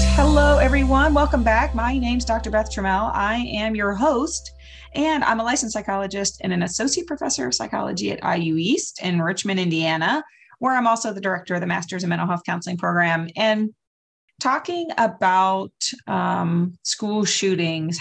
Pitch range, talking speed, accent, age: 175-235 Hz, 165 wpm, American, 30-49